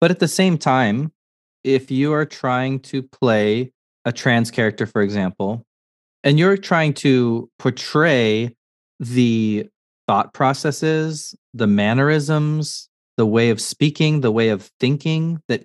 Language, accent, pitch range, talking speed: English, American, 115-140 Hz, 135 wpm